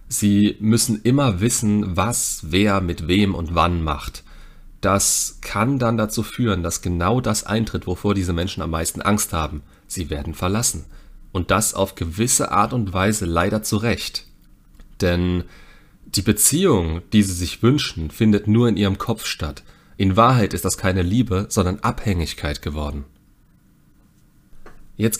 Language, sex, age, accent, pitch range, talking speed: German, male, 40-59, German, 85-110 Hz, 150 wpm